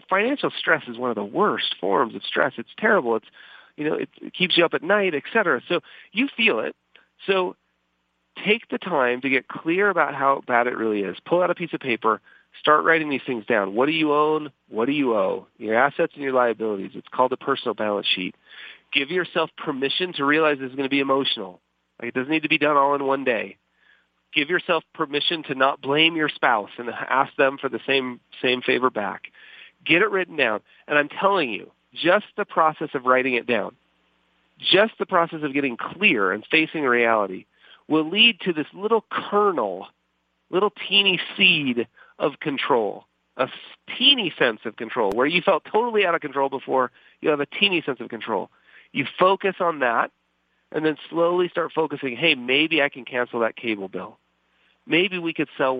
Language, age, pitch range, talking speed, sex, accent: English, 40-59, 120-170 Hz, 200 wpm, male, American